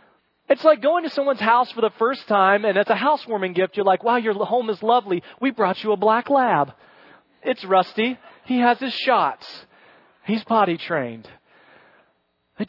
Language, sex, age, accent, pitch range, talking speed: English, male, 40-59, American, 170-260 Hz, 180 wpm